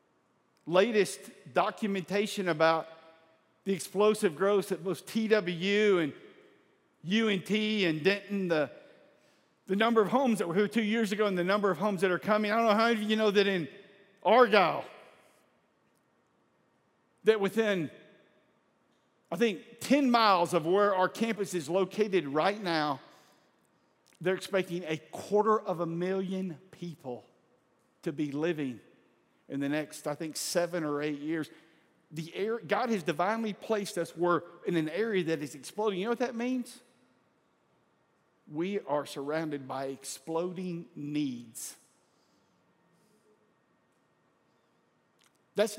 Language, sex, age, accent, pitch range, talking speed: English, male, 50-69, American, 165-215 Hz, 135 wpm